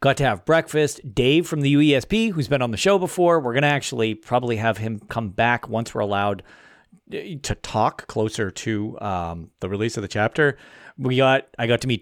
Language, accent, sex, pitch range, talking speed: English, American, male, 105-140 Hz, 205 wpm